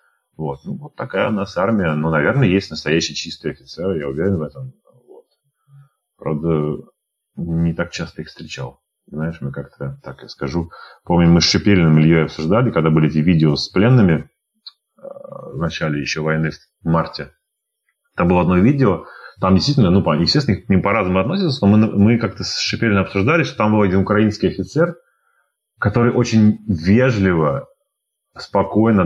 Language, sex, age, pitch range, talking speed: Russian, male, 30-49, 75-100 Hz, 160 wpm